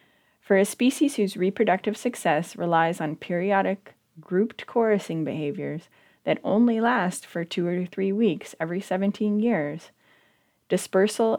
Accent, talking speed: American, 125 wpm